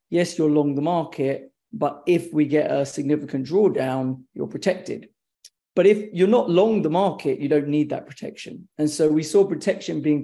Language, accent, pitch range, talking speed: English, British, 145-170 Hz, 190 wpm